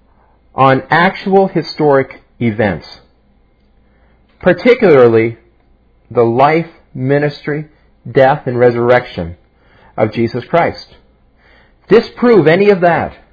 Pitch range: 120-170 Hz